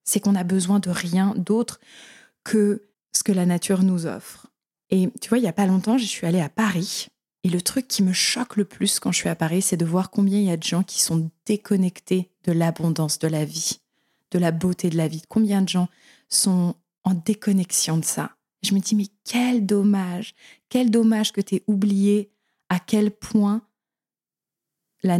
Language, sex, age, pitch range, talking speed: French, female, 20-39, 180-225 Hz, 205 wpm